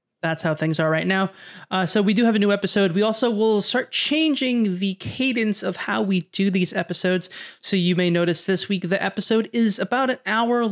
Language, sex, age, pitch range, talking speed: English, male, 20-39, 170-210 Hz, 220 wpm